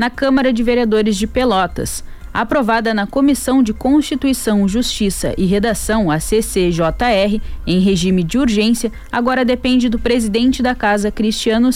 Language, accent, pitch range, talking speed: Portuguese, Brazilian, 205-255 Hz, 140 wpm